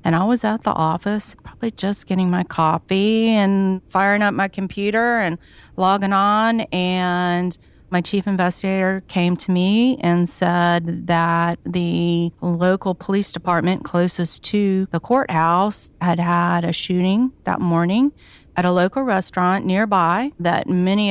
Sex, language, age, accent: female, English, 40-59, American